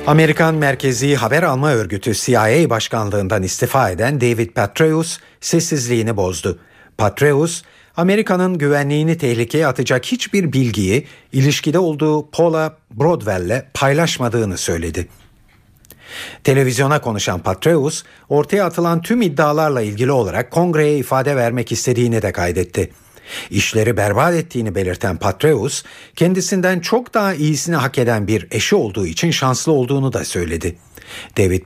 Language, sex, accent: Turkish, male, native